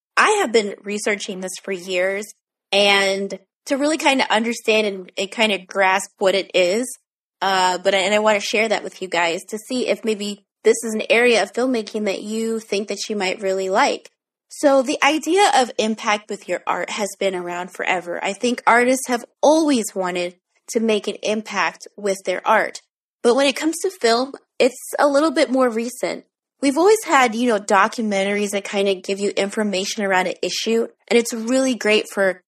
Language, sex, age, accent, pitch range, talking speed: English, female, 20-39, American, 195-240 Hz, 200 wpm